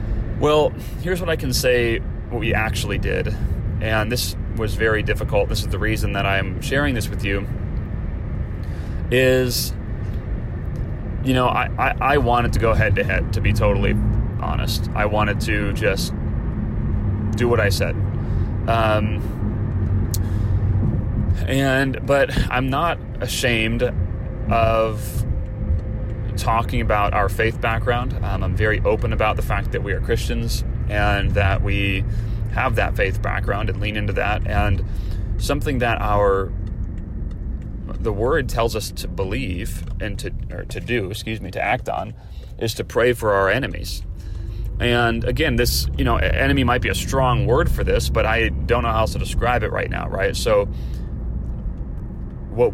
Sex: male